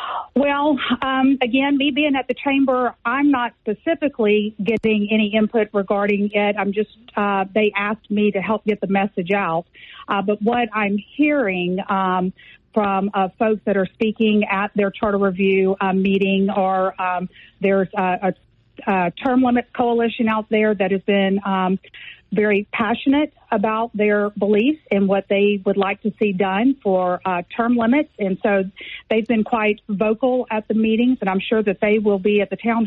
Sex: female